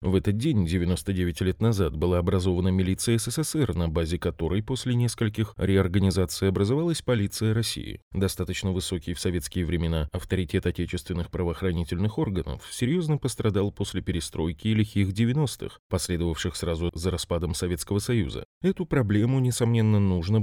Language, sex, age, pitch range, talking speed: Russian, male, 20-39, 90-115 Hz, 130 wpm